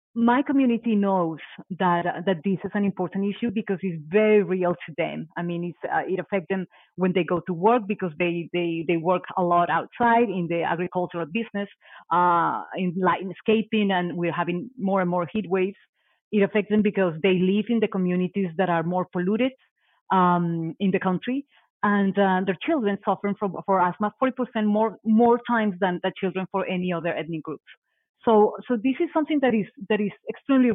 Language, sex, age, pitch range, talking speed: English, female, 30-49, 175-210 Hz, 195 wpm